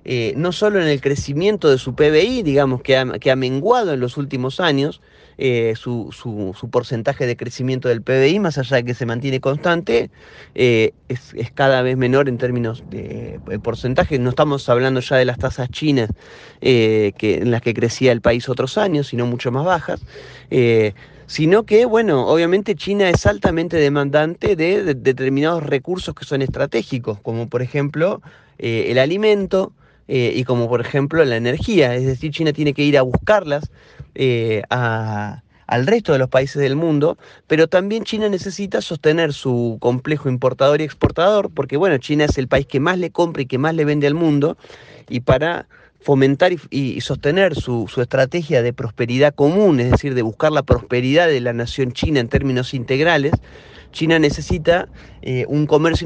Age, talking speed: 30-49, 180 wpm